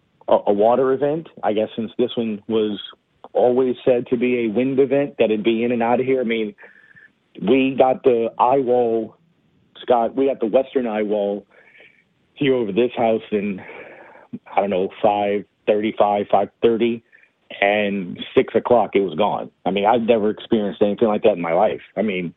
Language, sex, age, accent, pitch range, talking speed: English, male, 40-59, American, 110-135 Hz, 180 wpm